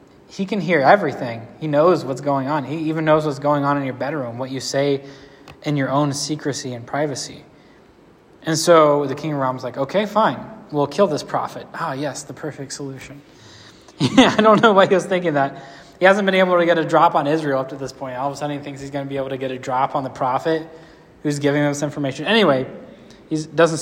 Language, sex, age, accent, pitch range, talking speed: English, male, 20-39, American, 140-180 Hz, 235 wpm